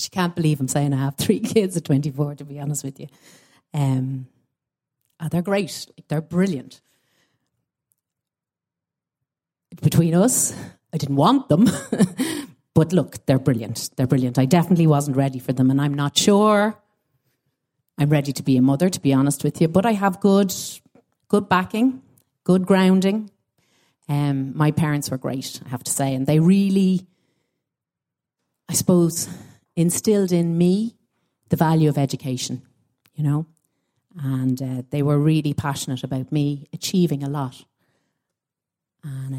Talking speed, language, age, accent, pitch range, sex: 150 wpm, English, 30-49, Irish, 135-170 Hz, female